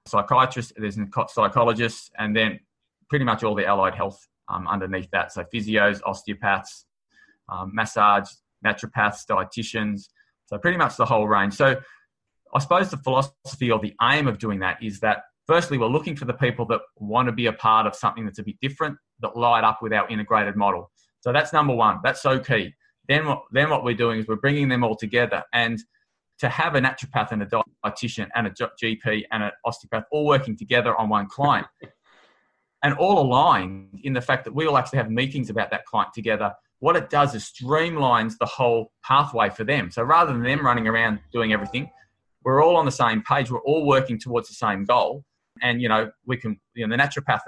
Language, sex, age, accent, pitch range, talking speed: English, male, 20-39, Australian, 105-130 Hz, 200 wpm